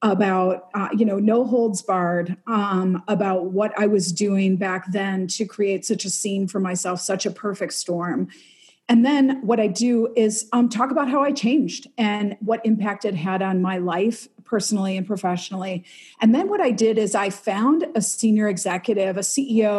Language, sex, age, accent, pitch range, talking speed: English, female, 40-59, American, 190-225 Hz, 190 wpm